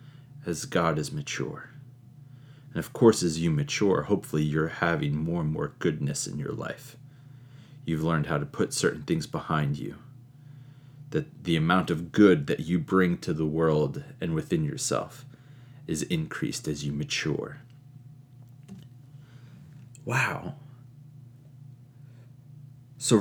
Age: 30-49